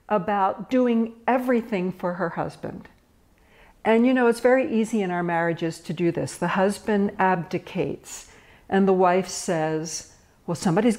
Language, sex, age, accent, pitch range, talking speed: English, female, 60-79, American, 170-225 Hz, 145 wpm